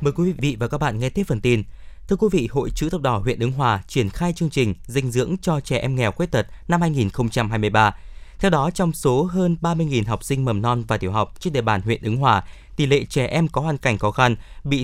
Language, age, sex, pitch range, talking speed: Vietnamese, 20-39, male, 115-160 Hz, 255 wpm